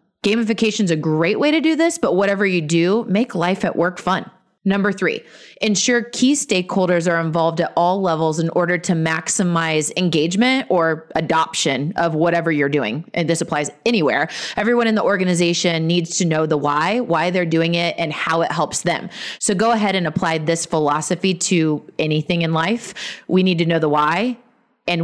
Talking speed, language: 185 wpm, English